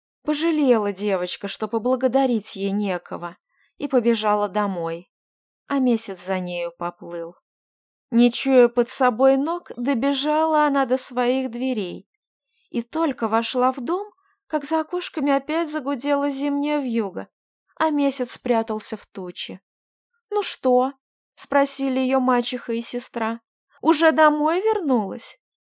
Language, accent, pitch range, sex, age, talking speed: Russian, native, 210-290 Hz, female, 20-39, 120 wpm